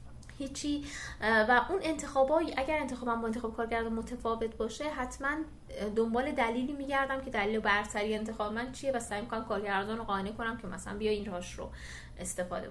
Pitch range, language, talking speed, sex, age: 200-250 Hz, Persian, 165 wpm, female, 20-39